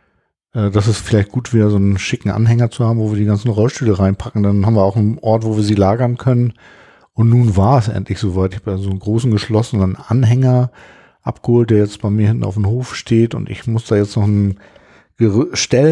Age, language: 50-69, German